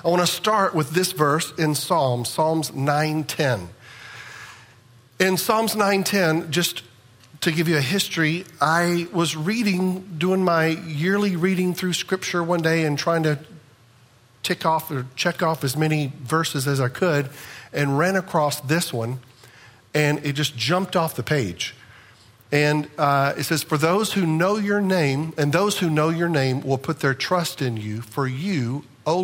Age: 50-69